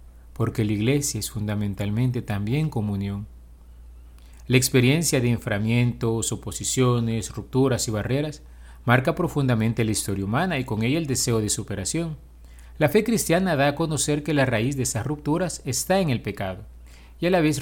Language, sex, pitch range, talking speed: Spanish, male, 105-150 Hz, 160 wpm